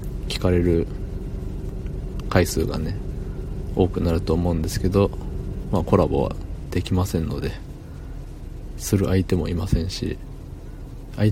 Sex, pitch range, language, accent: male, 85-95 Hz, Japanese, native